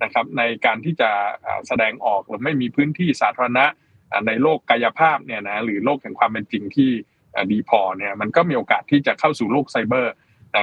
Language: Thai